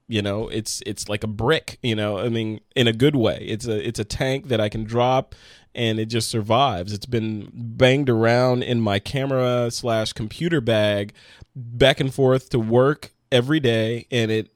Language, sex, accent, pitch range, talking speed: English, male, American, 110-125 Hz, 195 wpm